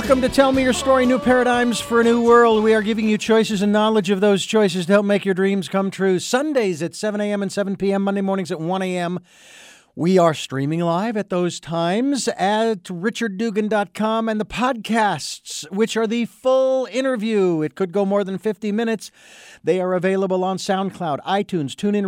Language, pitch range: English, 165-215 Hz